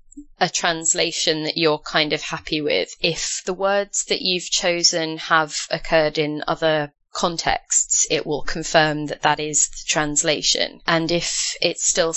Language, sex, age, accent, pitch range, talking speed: English, female, 20-39, British, 155-190 Hz, 155 wpm